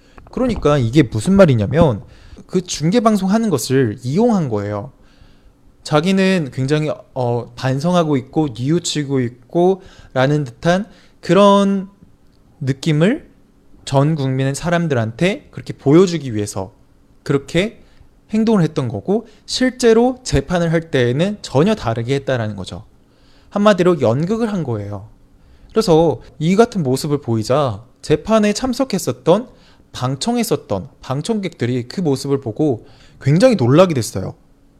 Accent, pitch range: Korean, 120-180 Hz